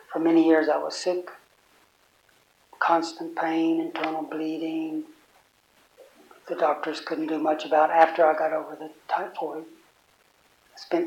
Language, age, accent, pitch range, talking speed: English, 60-79, American, 160-190 Hz, 135 wpm